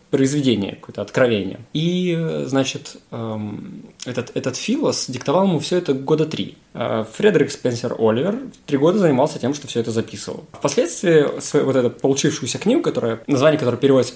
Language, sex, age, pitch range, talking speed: Russian, male, 20-39, 115-150 Hz, 145 wpm